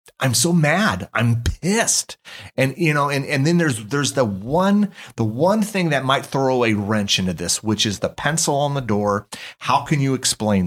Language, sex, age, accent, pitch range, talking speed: English, male, 30-49, American, 105-130 Hz, 200 wpm